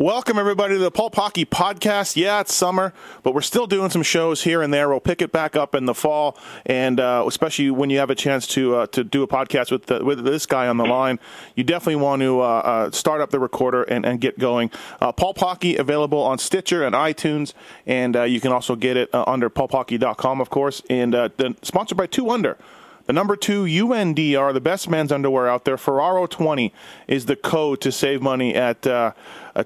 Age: 30-49